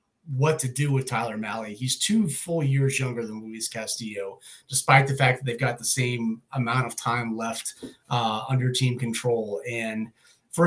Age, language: 30-49, English